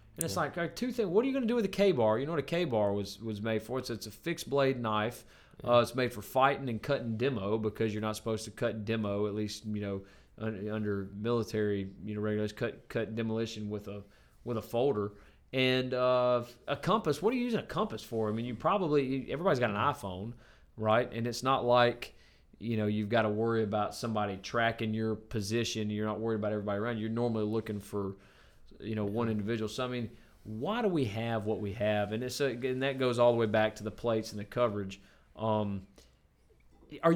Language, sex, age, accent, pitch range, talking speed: English, male, 30-49, American, 105-130 Hz, 225 wpm